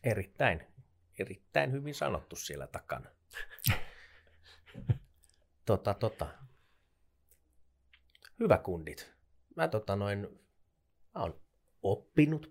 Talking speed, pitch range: 65 wpm, 85-110 Hz